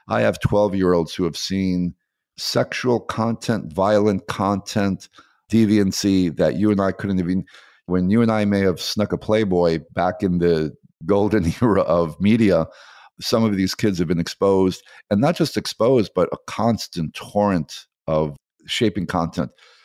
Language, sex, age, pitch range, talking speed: English, male, 50-69, 90-105 Hz, 155 wpm